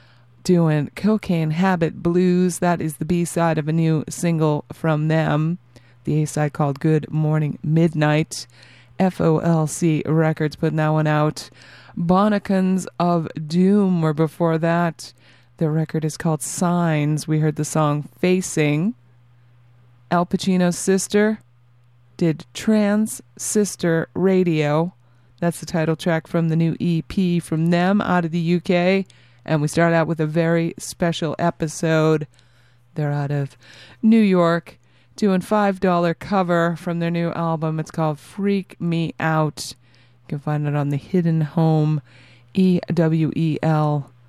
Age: 30-49